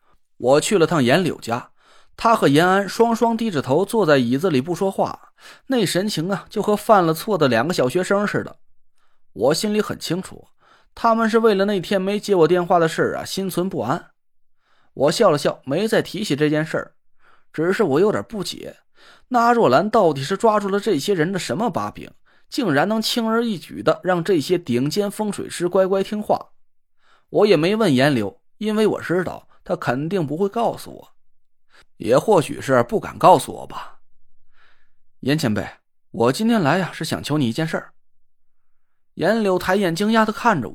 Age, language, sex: 20-39, Chinese, male